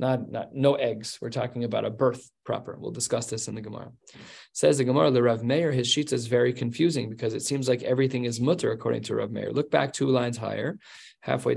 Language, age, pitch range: English, 20-39, 120-135 Hz